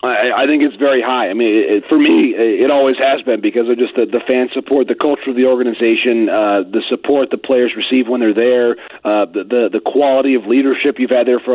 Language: English